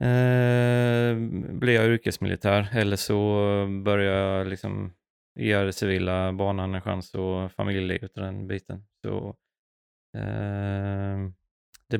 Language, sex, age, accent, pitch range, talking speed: Swedish, male, 20-39, native, 100-110 Hz, 110 wpm